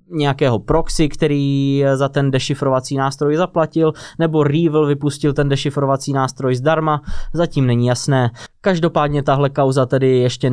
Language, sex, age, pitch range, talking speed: Czech, male, 20-39, 120-140 Hz, 130 wpm